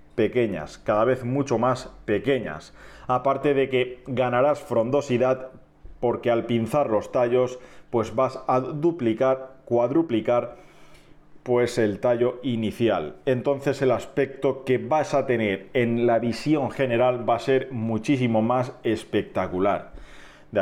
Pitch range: 120-150 Hz